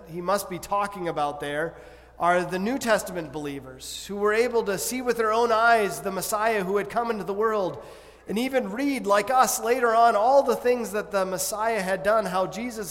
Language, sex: English, male